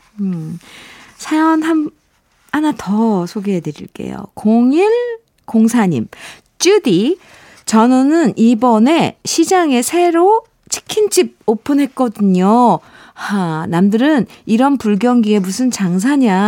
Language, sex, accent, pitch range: Korean, female, native, 210-320 Hz